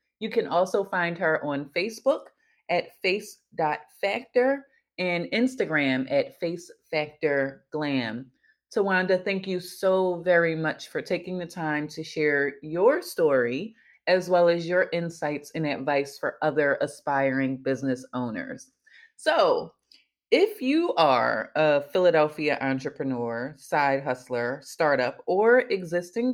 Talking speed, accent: 120 wpm, American